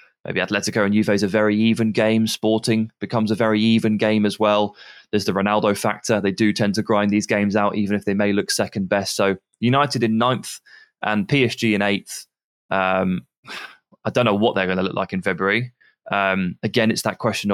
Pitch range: 105-125 Hz